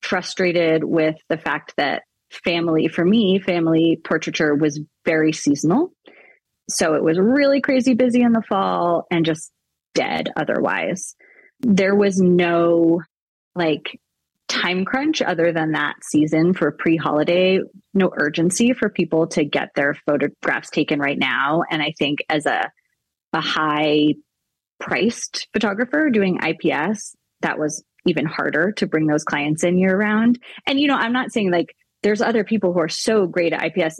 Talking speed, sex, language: 155 wpm, female, English